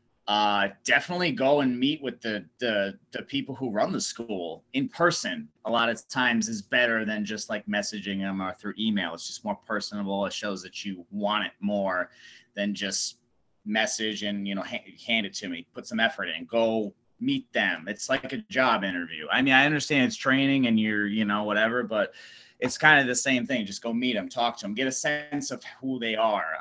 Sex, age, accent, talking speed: male, 30-49, American, 215 wpm